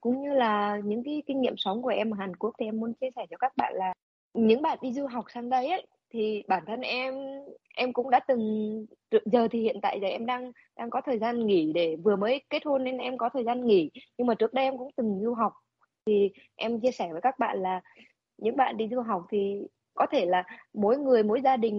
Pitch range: 210-260 Hz